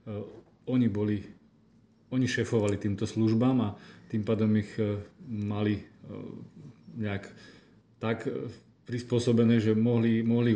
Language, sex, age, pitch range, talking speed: Slovak, male, 40-59, 105-115 Hz, 90 wpm